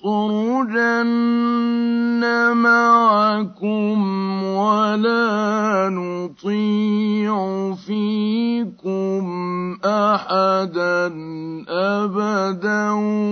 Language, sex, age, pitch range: Arabic, male, 50-69, 195-235 Hz